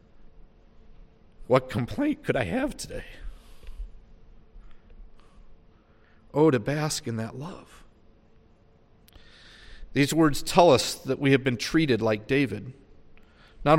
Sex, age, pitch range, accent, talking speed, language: male, 40-59, 110-150 Hz, American, 105 wpm, English